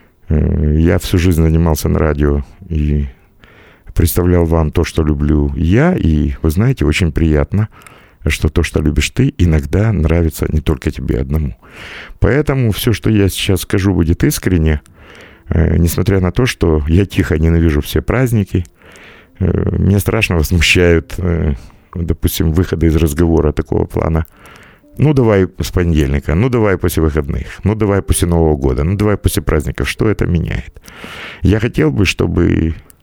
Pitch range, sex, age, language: 75-95 Hz, male, 50-69, Russian